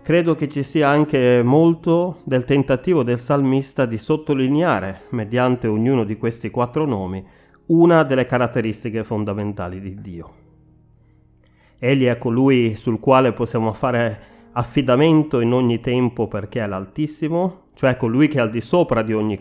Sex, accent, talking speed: male, native, 145 wpm